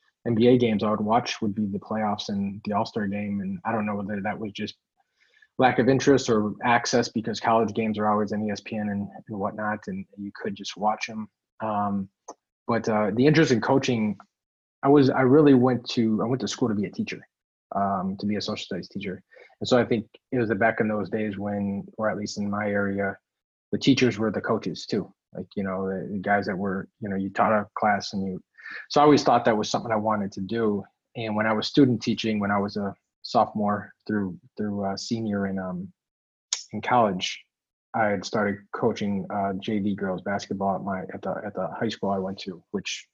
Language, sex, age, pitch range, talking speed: English, male, 20-39, 100-115 Hz, 220 wpm